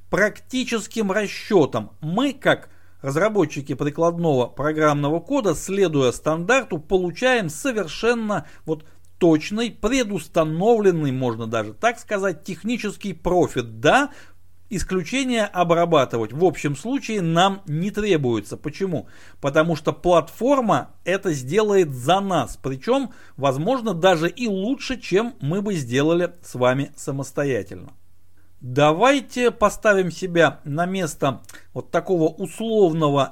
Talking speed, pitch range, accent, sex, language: 105 wpm, 140-200 Hz, native, male, Russian